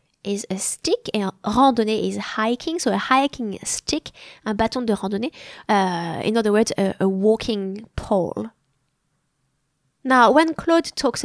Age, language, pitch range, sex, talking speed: 20-39, English, 195-250 Hz, female, 140 wpm